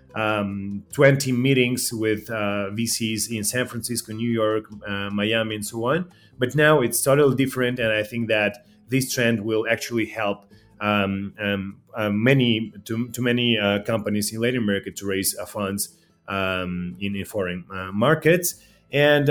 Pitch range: 105-125 Hz